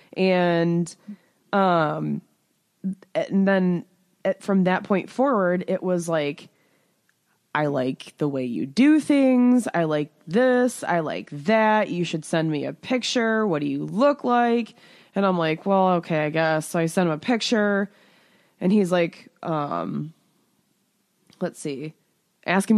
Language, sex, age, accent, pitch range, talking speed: English, female, 20-39, American, 160-205 Hz, 145 wpm